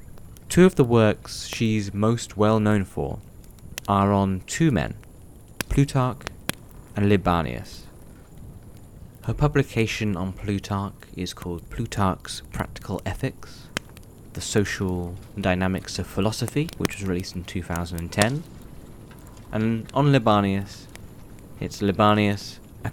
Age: 20-39